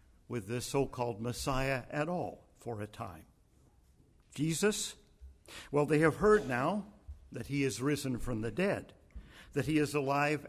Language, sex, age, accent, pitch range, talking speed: English, male, 50-69, American, 105-150 Hz, 150 wpm